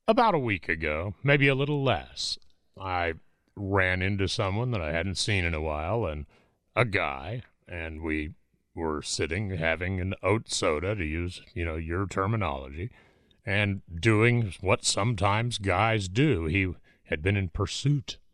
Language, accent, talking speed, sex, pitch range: English, American, 155 wpm, male, 90-120 Hz